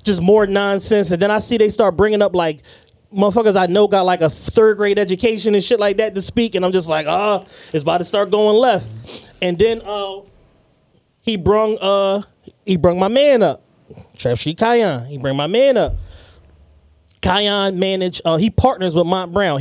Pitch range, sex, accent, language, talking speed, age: 165-225 Hz, male, American, English, 200 wpm, 20-39